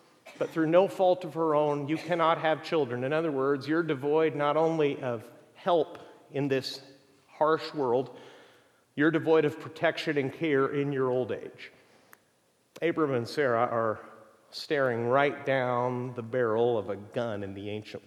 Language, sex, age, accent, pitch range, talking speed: English, male, 40-59, American, 140-180 Hz, 165 wpm